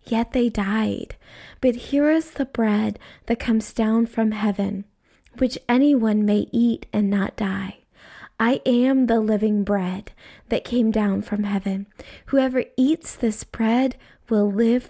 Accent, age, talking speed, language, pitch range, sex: American, 20-39, 145 wpm, English, 205-235 Hz, female